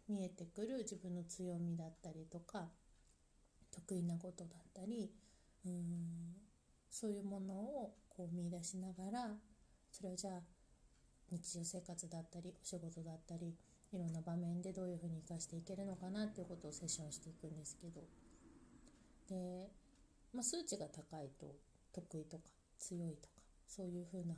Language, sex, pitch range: Japanese, female, 155-190 Hz